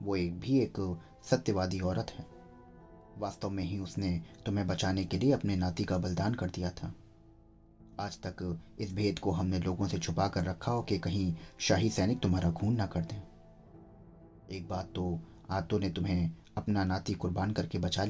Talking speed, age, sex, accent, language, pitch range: 180 wpm, 30-49, male, native, Hindi, 90-105 Hz